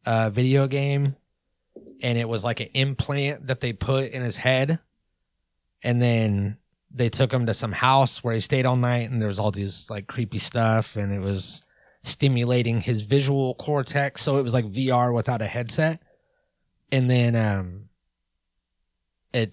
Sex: male